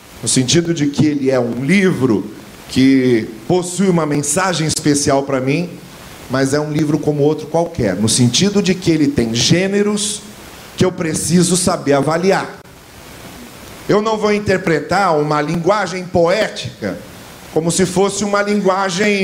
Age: 40-59